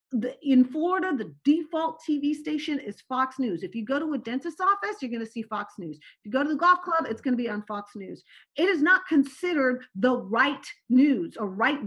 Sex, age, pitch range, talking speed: female, 40-59, 230-315 Hz, 235 wpm